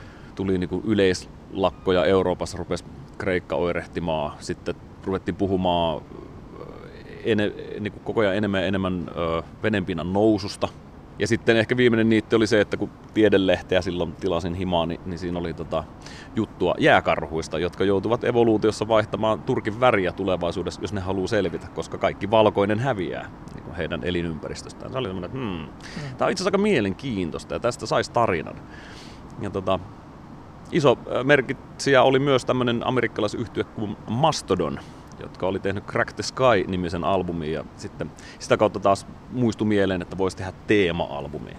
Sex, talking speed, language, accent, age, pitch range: male, 140 wpm, Finnish, native, 30-49, 90-115 Hz